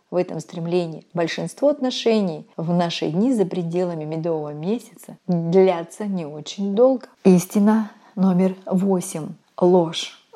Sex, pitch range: female, 170-225 Hz